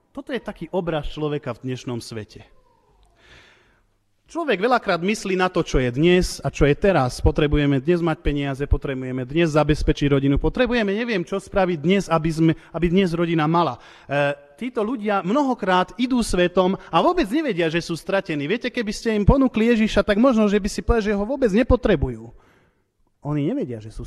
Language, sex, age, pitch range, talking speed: Slovak, male, 30-49, 145-200 Hz, 175 wpm